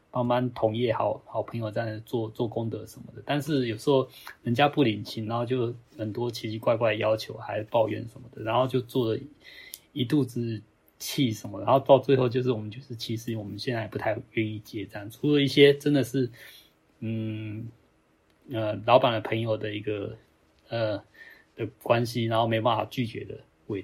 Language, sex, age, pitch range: Chinese, male, 20-39, 110-135 Hz